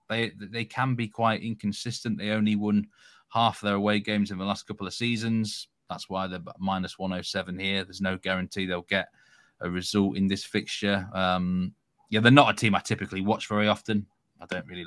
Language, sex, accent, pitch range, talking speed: English, male, British, 95-110 Hz, 200 wpm